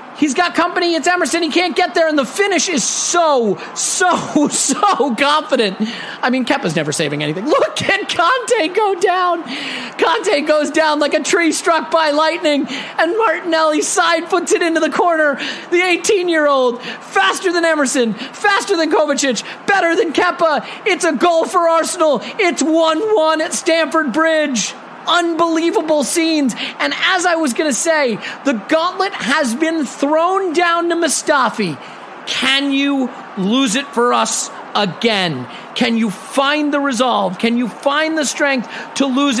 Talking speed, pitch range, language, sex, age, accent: 155 wpm, 265-340 Hz, English, male, 30-49, American